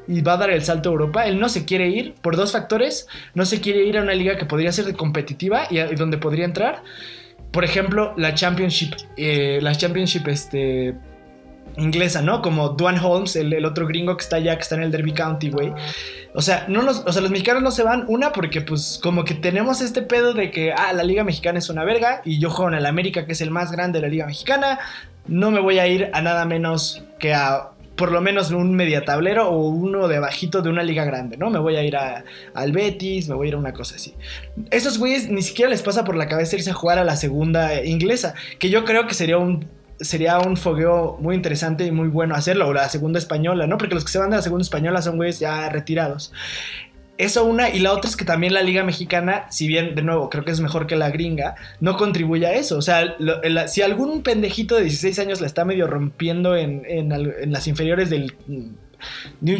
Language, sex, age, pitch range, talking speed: Spanish, male, 20-39, 155-190 Hz, 240 wpm